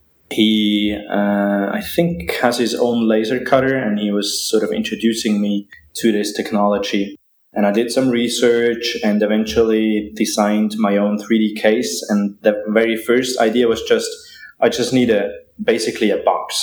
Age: 20-39